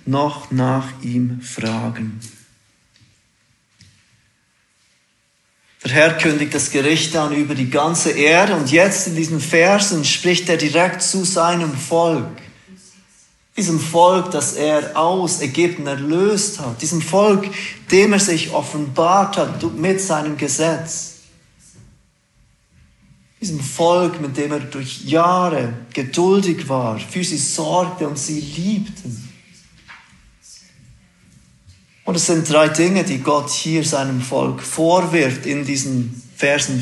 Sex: male